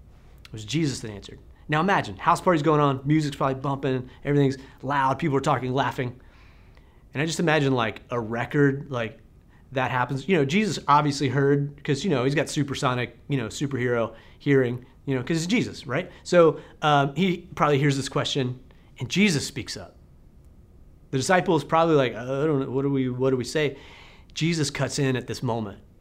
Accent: American